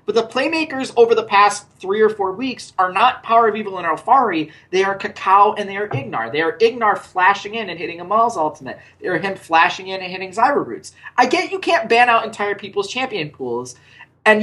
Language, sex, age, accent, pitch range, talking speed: English, male, 30-49, American, 155-235 Hz, 220 wpm